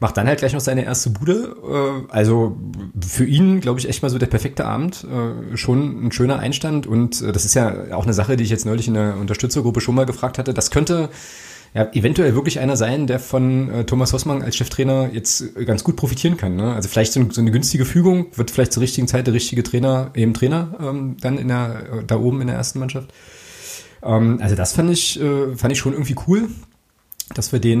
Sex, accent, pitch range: male, German, 110-135 Hz